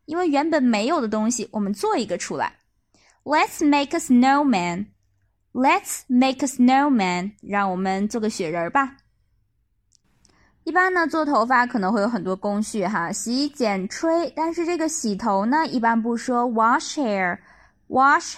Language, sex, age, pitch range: Chinese, female, 20-39, 215-300 Hz